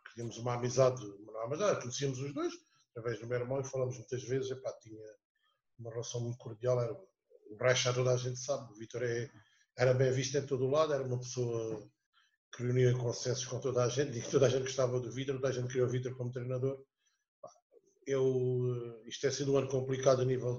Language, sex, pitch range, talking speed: Portuguese, male, 115-135 Hz, 220 wpm